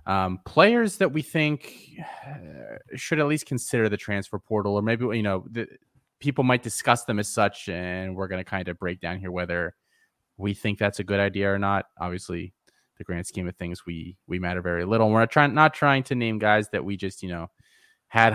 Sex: male